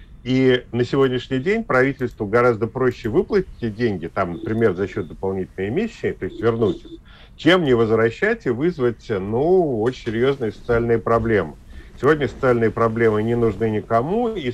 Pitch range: 105-130 Hz